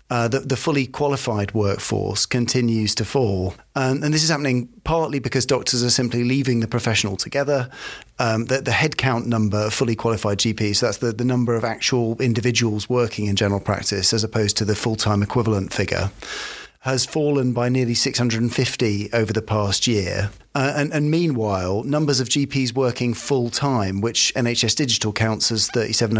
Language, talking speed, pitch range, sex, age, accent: English, 170 wpm, 110-130 Hz, male, 40-59, British